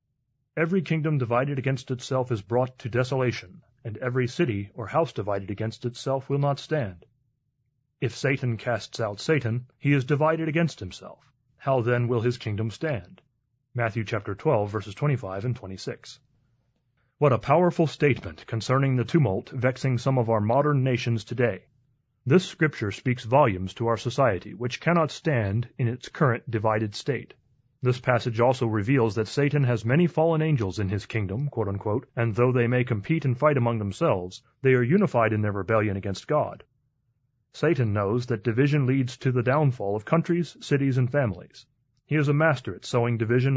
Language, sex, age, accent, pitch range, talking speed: English, male, 30-49, American, 115-140 Hz, 170 wpm